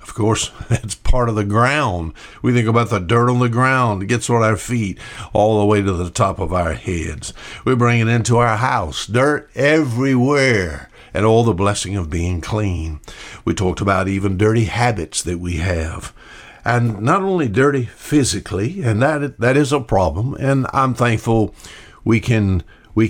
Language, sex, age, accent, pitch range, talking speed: English, male, 60-79, American, 95-125 Hz, 180 wpm